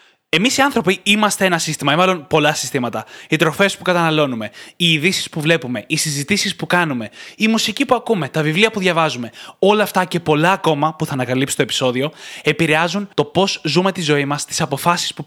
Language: Greek